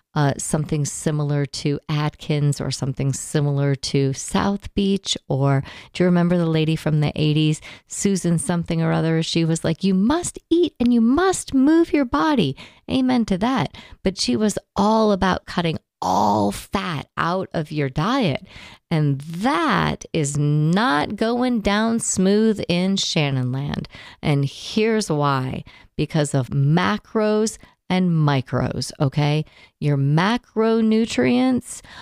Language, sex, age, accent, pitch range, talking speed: English, female, 40-59, American, 145-195 Hz, 135 wpm